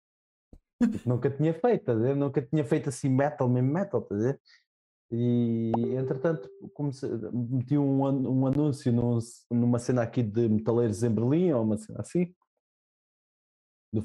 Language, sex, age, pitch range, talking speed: Portuguese, male, 20-39, 115-160 Hz, 160 wpm